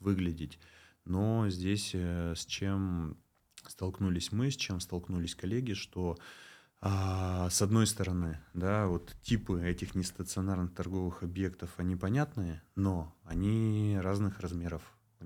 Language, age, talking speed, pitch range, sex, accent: Russian, 20-39, 120 wpm, 90-100 Hz, male, native